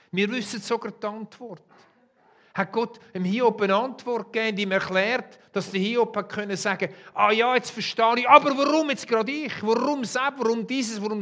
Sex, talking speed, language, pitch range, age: male, 195 wpm, German, 140-210 Hz, 50-69